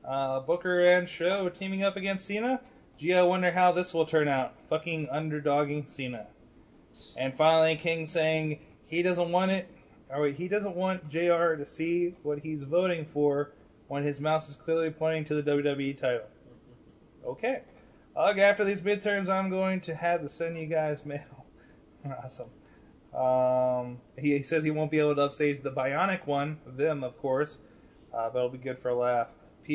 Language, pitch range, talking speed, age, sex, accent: English, 140-180 Hz, 170 wpm, 20-39, male, American